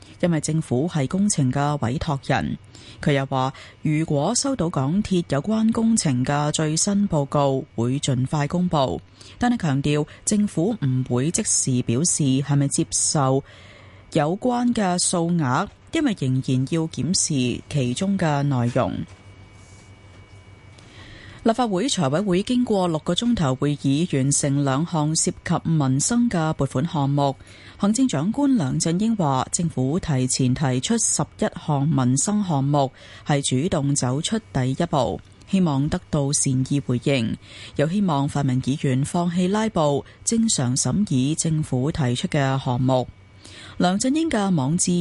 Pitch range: 130-175 Hz